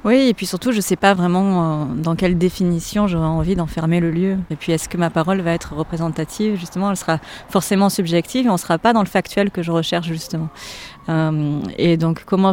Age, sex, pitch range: 30-49, female, 165-230 Hz